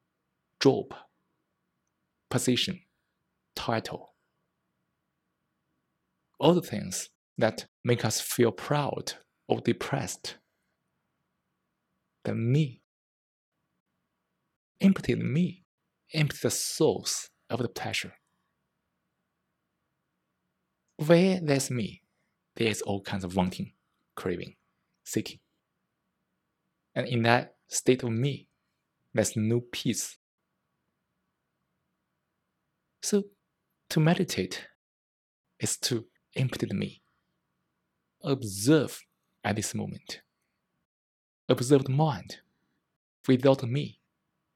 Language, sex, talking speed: English, male, 80 wpm